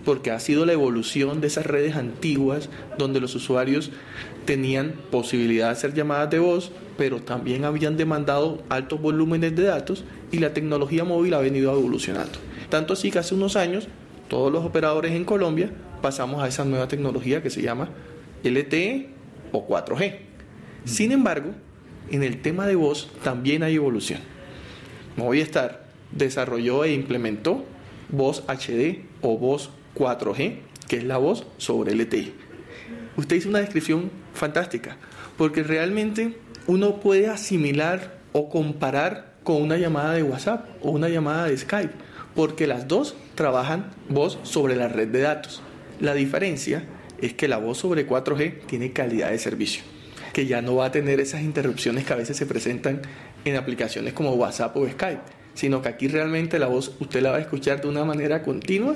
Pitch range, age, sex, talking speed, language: 135-165 Hz, 30-49, male, 160 wpm, Spanish